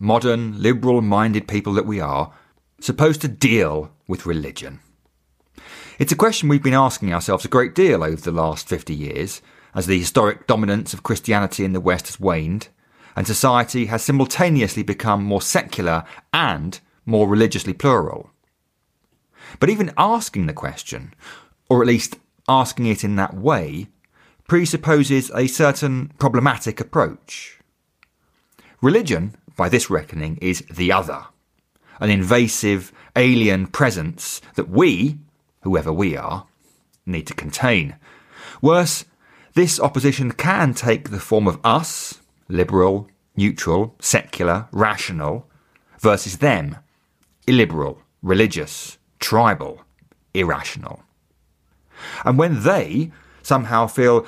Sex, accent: male, British